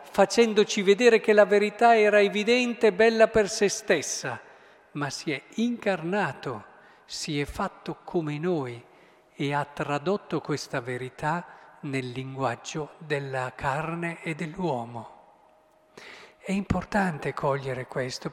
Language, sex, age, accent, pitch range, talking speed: Italian, male, 40-59, native, 150-205 Hz, 120 wpm